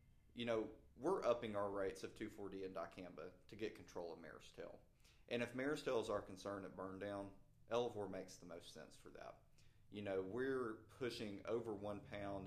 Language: English